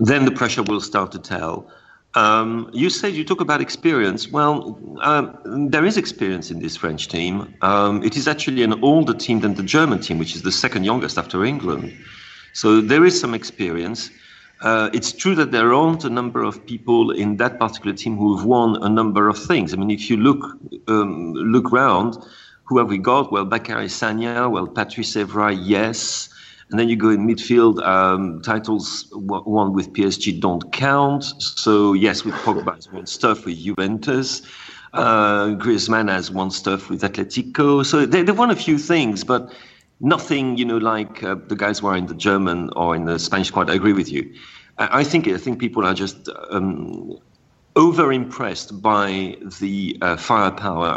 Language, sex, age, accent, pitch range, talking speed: English, male, 40-59, French, 100-125 Hz, 185 wpm